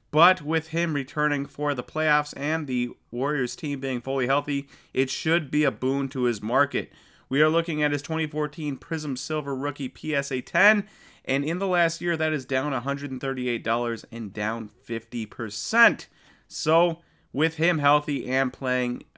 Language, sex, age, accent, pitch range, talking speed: English, male, 30-49, American, 125-165 Hz, 160 wpm